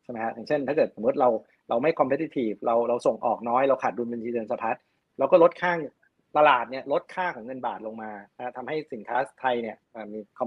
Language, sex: Thai, male